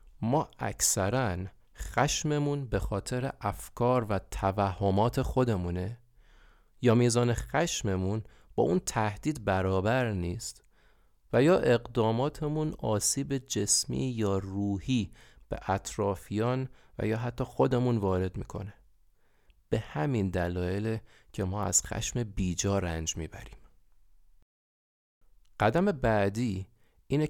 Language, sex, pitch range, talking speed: Persian, male, 90-115 Hz, 100 wpm